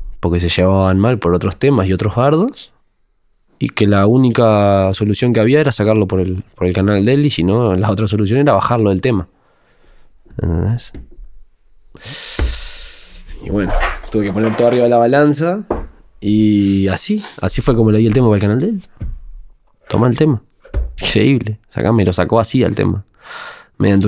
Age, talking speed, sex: 20-39, 180 wpm, male